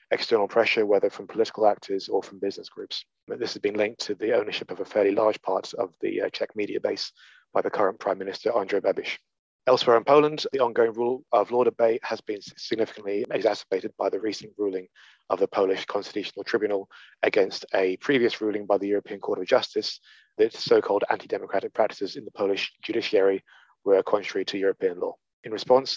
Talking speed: 185 wpm